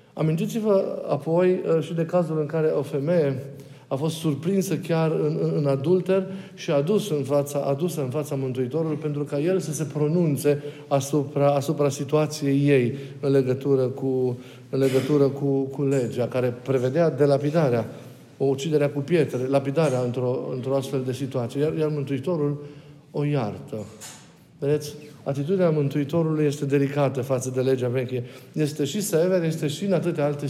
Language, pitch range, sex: Romanian, 140-160 Hz, male